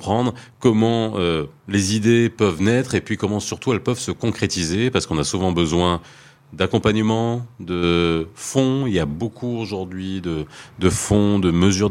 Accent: French